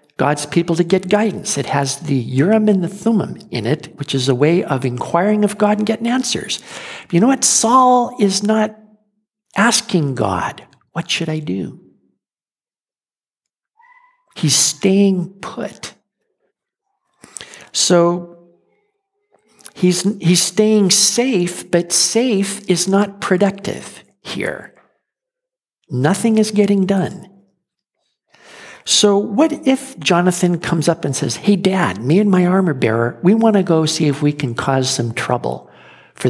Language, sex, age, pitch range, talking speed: English, male, 50-69, 165-220 Hz, 135 wpm